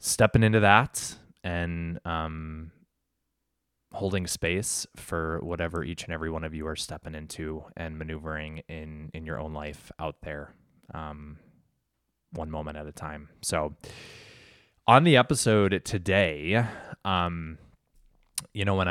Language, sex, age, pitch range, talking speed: English, male, 20-39, 80-90 Hz, 135 wpm